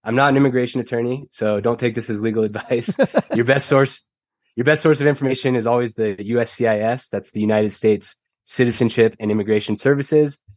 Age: 20-39